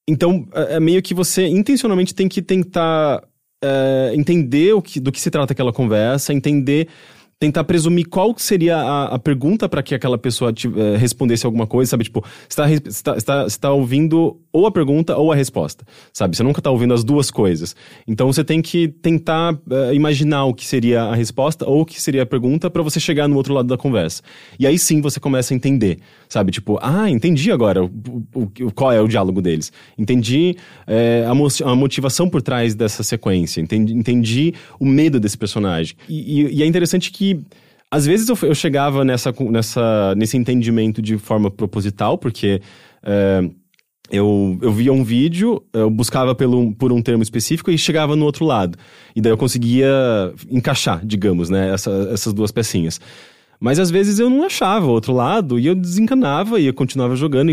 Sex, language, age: male, English, 20-39